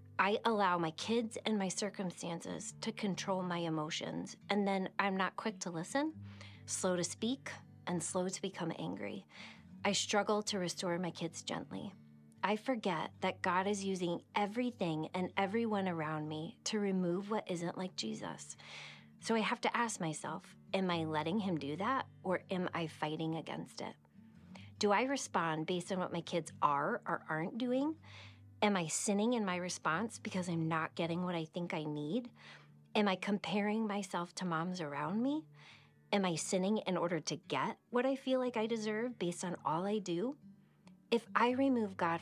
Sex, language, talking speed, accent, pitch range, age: female, English, 180 wpm, American, 160-205 Hz, 30-49